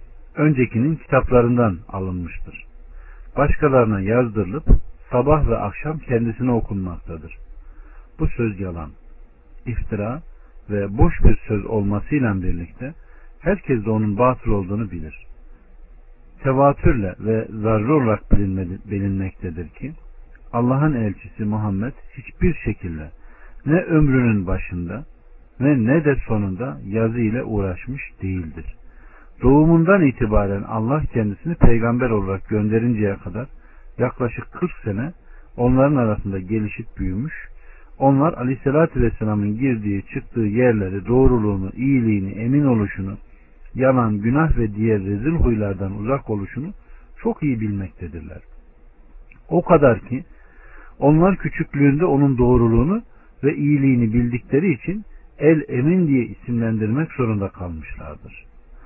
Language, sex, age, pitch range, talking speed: Turkish, male, 50-69, 95-130 Hz, 105 wpm